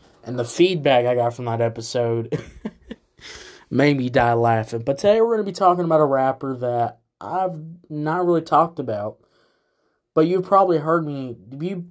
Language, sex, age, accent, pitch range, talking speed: English, male, 20-39, American, 125-165 Hz, 170 wpm